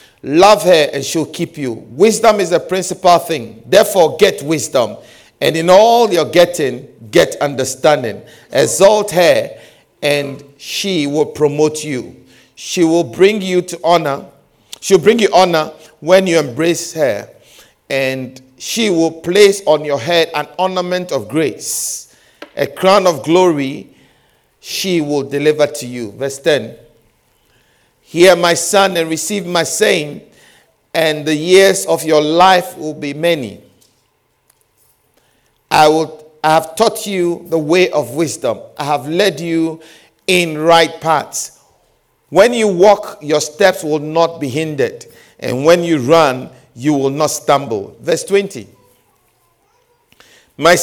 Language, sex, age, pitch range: English, male, 50-69, 150-185 Hz